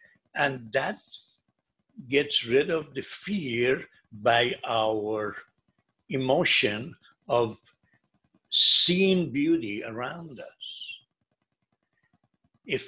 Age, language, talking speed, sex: 60-79, English, 75 wpm, male